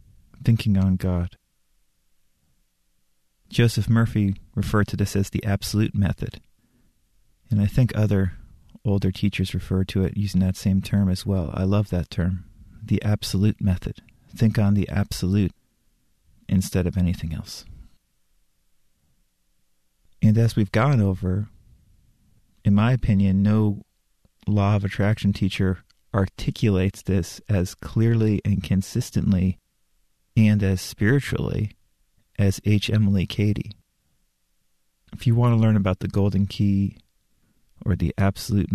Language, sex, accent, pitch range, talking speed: English, male, American, 90-105 Hz, 125 wpm